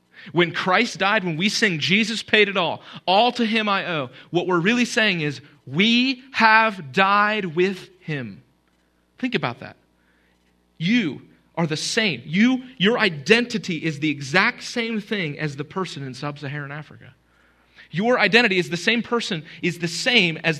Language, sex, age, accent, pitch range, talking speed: English, male, 30-49, American, 120-195 Hz, 165 wpm